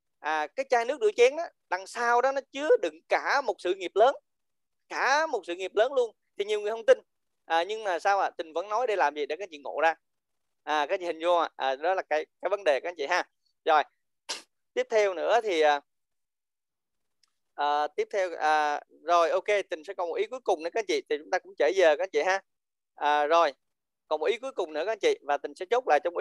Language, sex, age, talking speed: Vietnamese, male, 20-39, 255 wpm